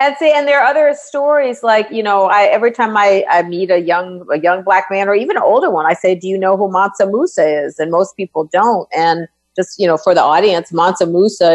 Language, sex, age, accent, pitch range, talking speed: English, female, 50-69, American, 180-235 Hz, 255 wpm